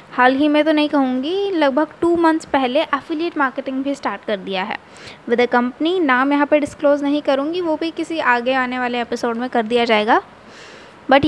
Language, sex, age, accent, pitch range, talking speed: Hindi, female, 20-39, native, 255-310 Hz, 200 wpm